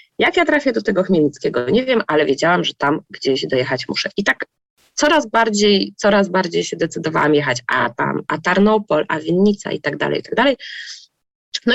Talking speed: 185 wpm